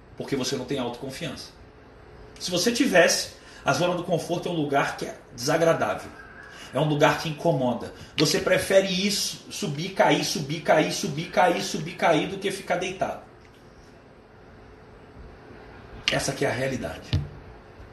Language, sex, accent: Portuguese, male, Brazilian